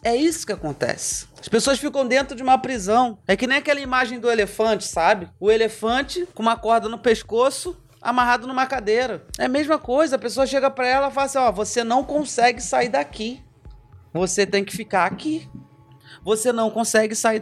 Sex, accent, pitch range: male, Brazilian, 180-245 Hz